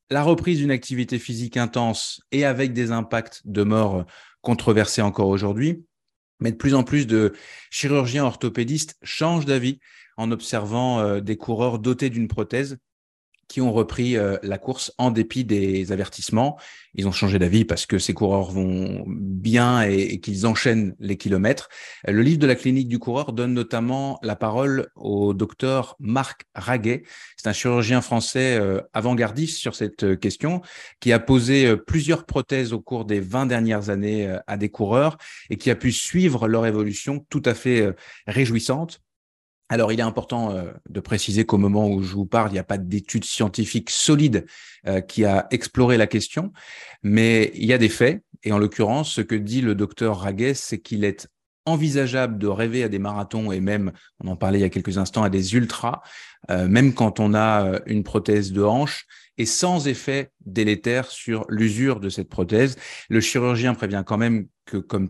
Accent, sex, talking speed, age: French, male, 175 wpm, 30-49